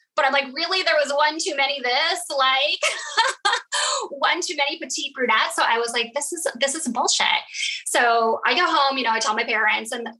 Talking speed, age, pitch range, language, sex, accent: 210 wpm, 10-29, 215-290 Hz, English, female, American